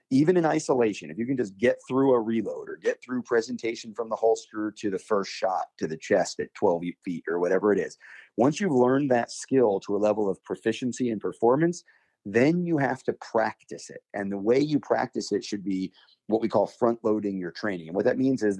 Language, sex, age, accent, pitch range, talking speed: English, male, 30-49, American, 105-145 Hz, 225 wpm